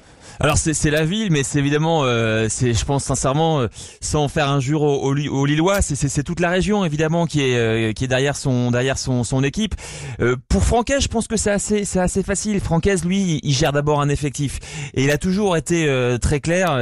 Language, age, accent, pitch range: French, 20-39, French, 140-180 Hz